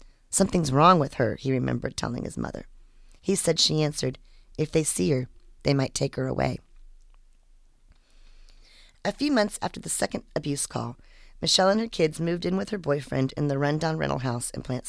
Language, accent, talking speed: English, American, 185 wpm